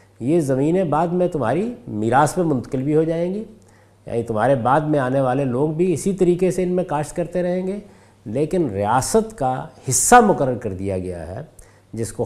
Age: 50-69